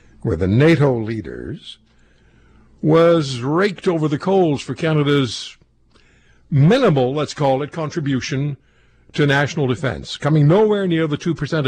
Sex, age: male, 60-79